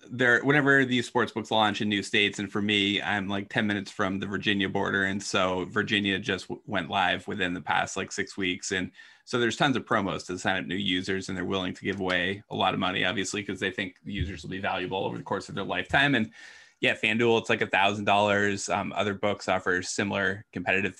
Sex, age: male, 20-39